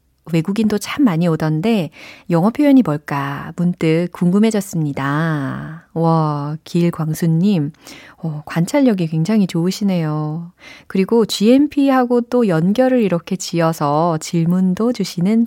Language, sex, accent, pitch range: Korean, female, native, 160-240 Hz